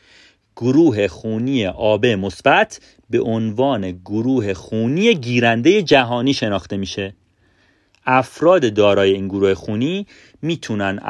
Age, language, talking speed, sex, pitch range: 40-59, Persian, 95 wpm, male, 100-135 Hz